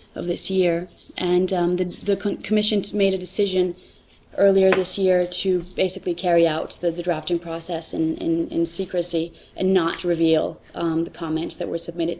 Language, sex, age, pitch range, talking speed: English, female, 20-39, 170-190 Hz, 165 wpm